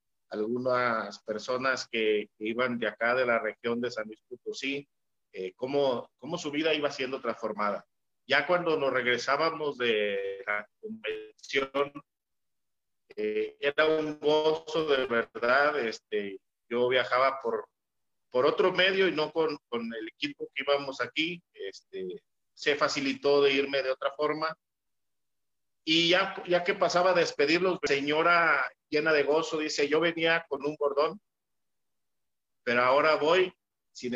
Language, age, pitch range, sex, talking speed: Spanish, 50-69, 130-170 Hz, male, 140 wpm